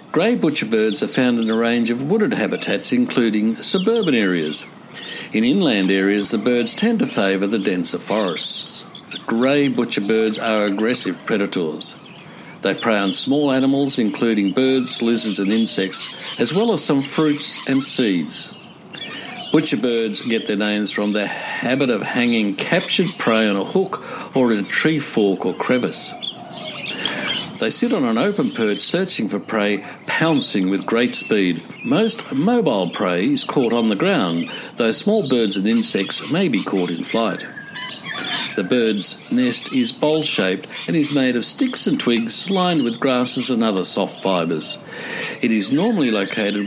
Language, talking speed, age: English, 160 wpm, 60-79